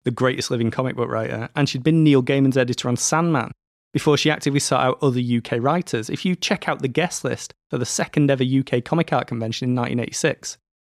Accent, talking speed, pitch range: British, 215 wpm, 125-150 Hz